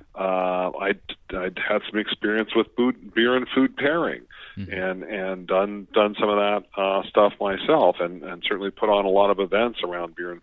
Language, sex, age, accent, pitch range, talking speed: English, male, 40-59, American, 90-105 Hz, 195 wpm